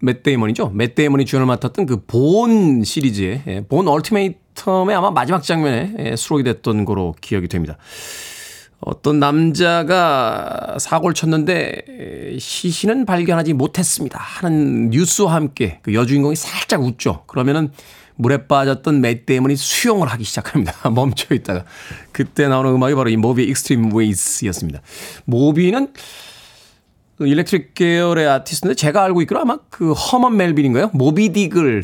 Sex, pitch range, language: male, 115-170 Hz, Korean